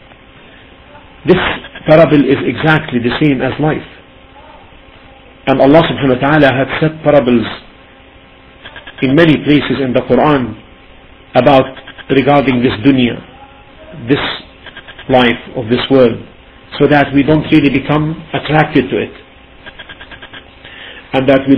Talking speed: 120 wpm